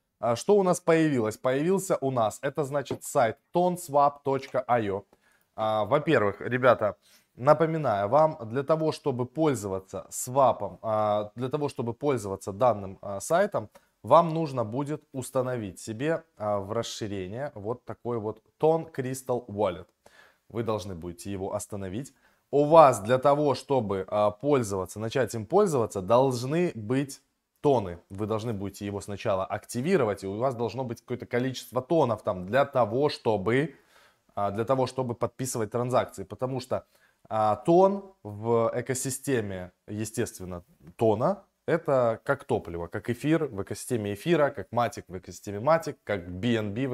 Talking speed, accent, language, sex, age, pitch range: 130 wpm, native, Russian, male, 20-39, 105-140 Hz